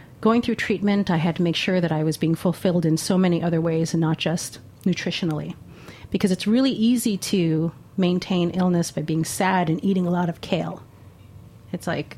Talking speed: 195 wpm